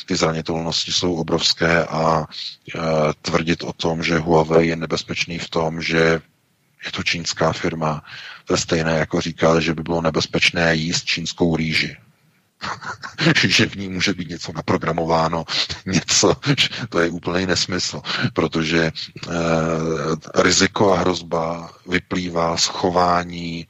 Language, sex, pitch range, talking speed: Czech, male, 80-90 Hz, 130 wpm